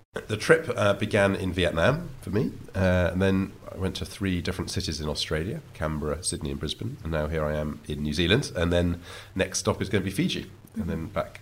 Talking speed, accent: 225 wpm, British